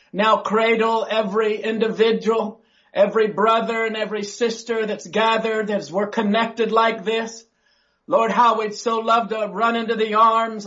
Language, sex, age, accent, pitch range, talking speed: English, male, 40-59, American, 210-230 Hz, 145 wpm